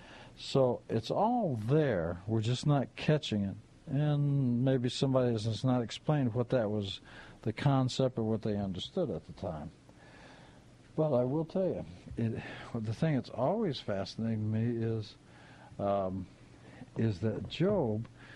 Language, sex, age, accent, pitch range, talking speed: English, male, 60-79, American, 110-145 Hz, 140 wpm